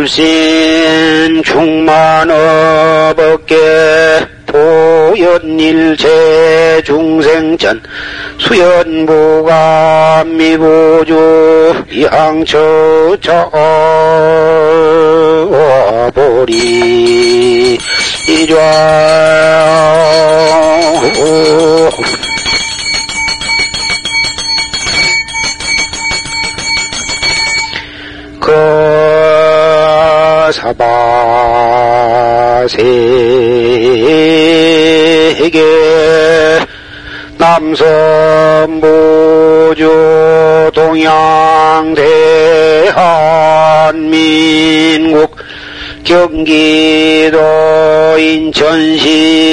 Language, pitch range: Korean, 155-160 Hz